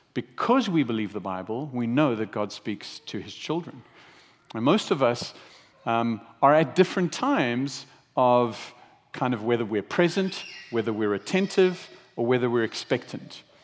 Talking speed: 155 wpm